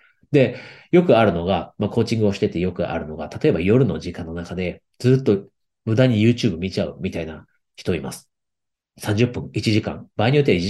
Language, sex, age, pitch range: Japanese, male, 40-59, 100-130 Hz